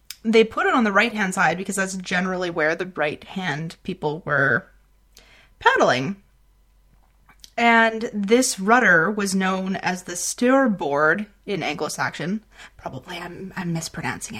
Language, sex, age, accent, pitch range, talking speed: English, female, 20-39, American, 175-240 Hz, 140 wpm